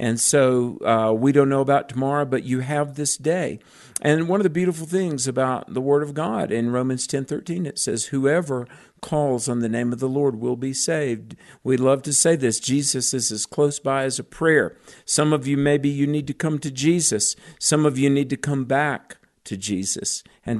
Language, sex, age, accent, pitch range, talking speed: English, male, 50-69, American, 120-150 Hz, 215 wpm